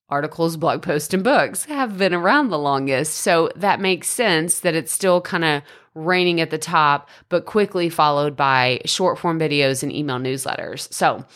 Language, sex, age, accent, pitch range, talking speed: English, female, 30-49, American, 150-220 Hz, 175 wpm